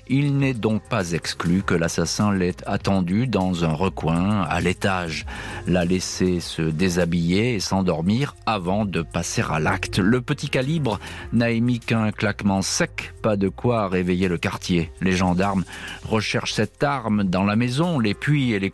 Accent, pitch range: French, 95-120 Hz